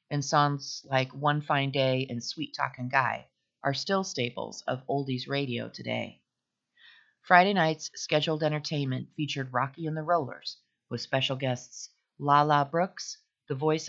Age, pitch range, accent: 40-59, 125-160 Hz, American